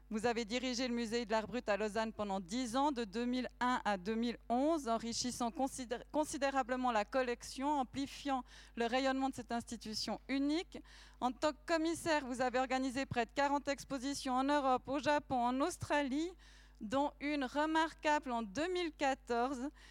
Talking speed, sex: 150 wpm, female